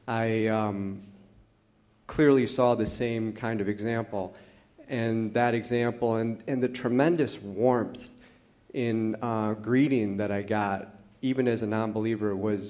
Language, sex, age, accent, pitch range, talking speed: English, male, 40-59, American, 105-120 Hz, 130 wpm